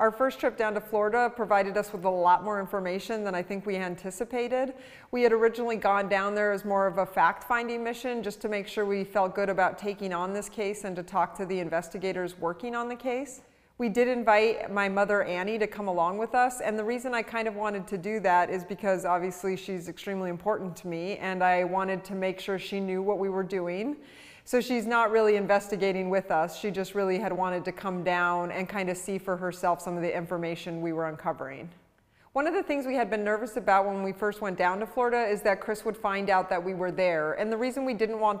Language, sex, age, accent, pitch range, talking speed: English, female, 30-49, American, 185-220 Hz, 240 wpm